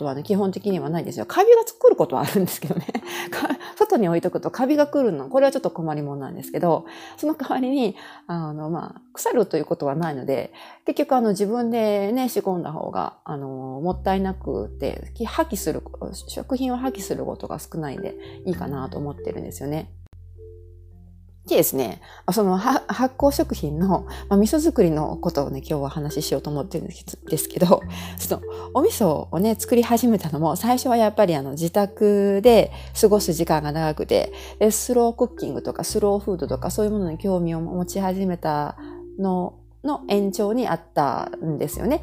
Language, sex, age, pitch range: Japanese, female, 40-59, 150-230 Hz